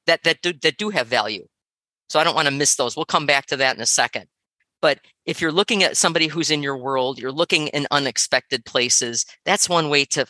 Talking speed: 240 wpm